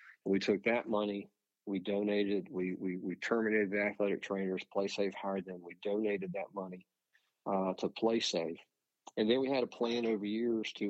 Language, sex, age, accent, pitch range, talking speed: English, male, 40-59, American, 95-105 Hz, 175 wpm